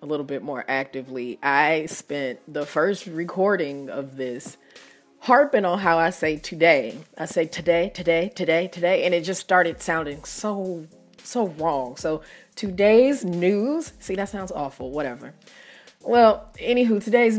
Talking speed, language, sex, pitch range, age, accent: 150 wpm, English, female, 150-210 Hz, 30-49, American